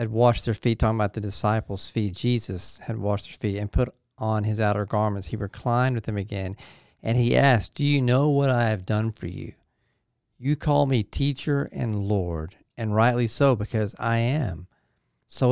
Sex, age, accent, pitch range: male, 40-59, American, 100-120 Hz